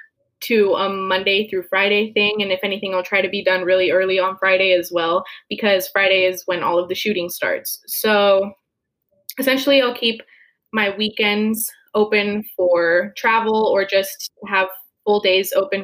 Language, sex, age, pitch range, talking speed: English, female, 20-39, 185-220 Hz, 165 wpm